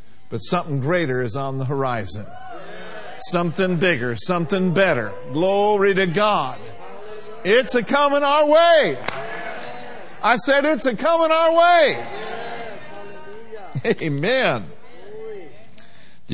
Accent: American